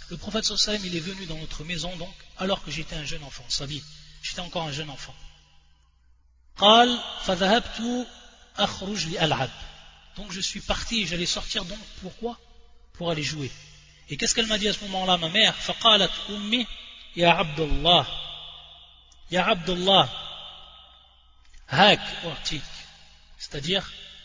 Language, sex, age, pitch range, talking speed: French, male, 30-49, 145-195 Hz, 105 wpm